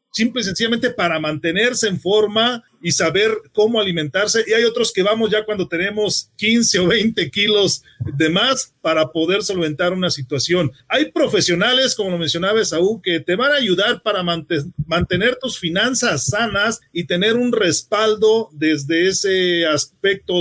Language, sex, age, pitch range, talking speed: Spanish, male, 40-59, 155-215 Hz, 160 wpm